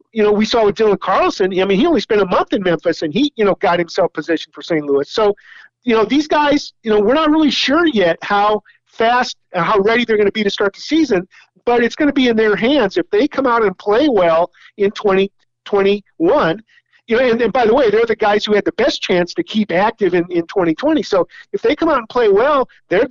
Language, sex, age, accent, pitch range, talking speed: English, male, 50-69, American, 190-260 Hz, 255 wpm